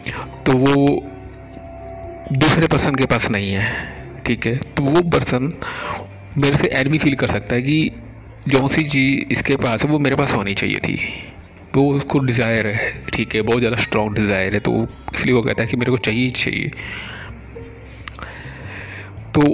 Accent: native